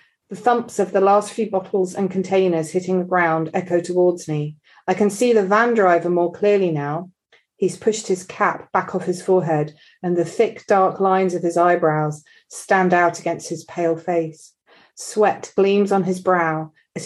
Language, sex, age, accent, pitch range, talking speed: English, female, 40-59, British, 160-195 Hz, 185 wpm